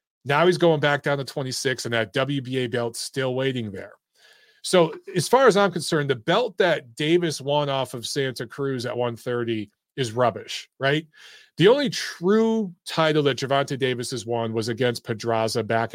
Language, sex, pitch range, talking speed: English, male, 115-155 Hz, 175 wpm